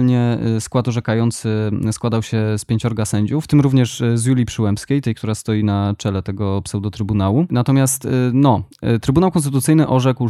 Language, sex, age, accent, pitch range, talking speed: Polish, male, 20-39, native, 110-125 Hz, 140 wpm